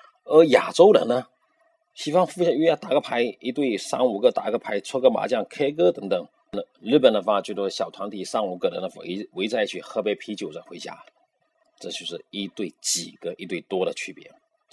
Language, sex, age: Chinese, male, 30-49